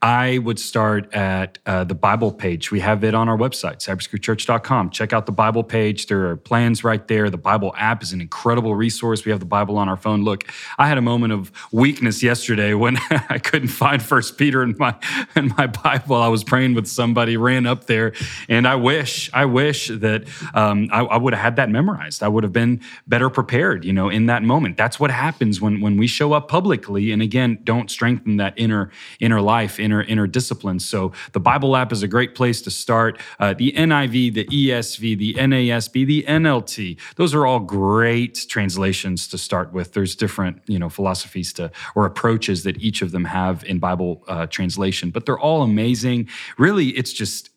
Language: English